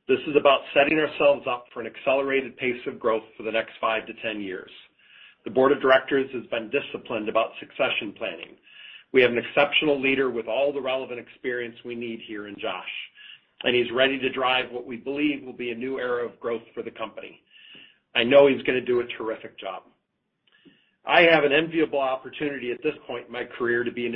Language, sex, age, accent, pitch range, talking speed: English, male, 40-59, American, 115-135 Hz, 210 wpm